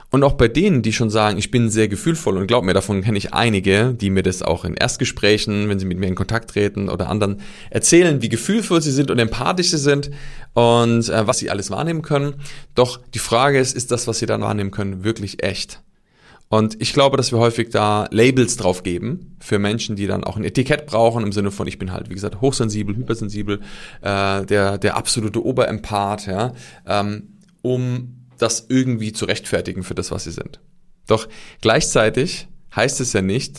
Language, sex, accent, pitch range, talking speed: German, male, German, 100-125 Hz, 200 wpm